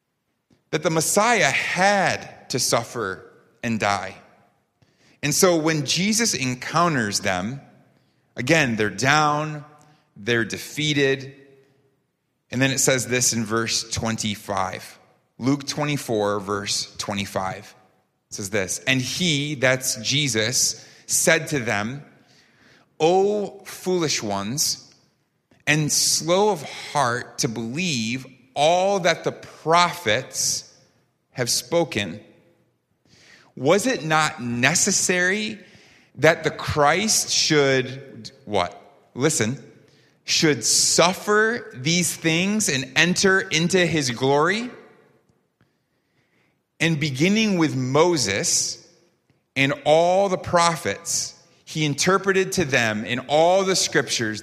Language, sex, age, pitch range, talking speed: English, male, 30-49, 115-165 Hz, 100 wpm